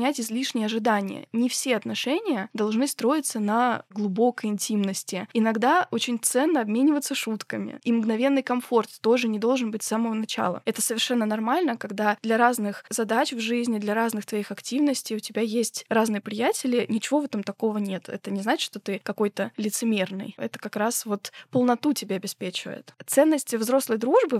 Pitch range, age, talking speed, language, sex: 215-260 Hz, 20-39, 160 wpm, Russian, female